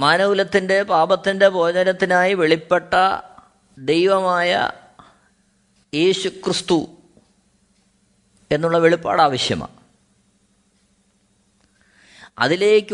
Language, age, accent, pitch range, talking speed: Malayalam, 30-49, native, 145-205 Hz, 45 wpm